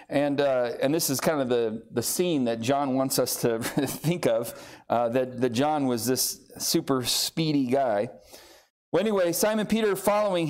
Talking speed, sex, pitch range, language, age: 175 wpm, male, 145-215 Hz, English, 40-59